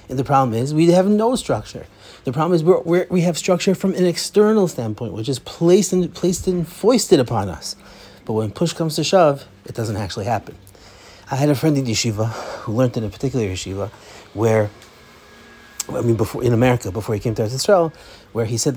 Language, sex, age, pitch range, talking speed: English, male, 30-49, 110-150 Hz, 205 wpm